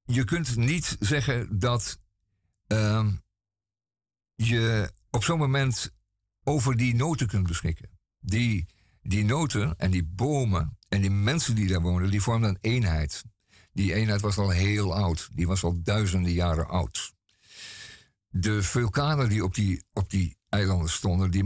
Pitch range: 95-120 Hz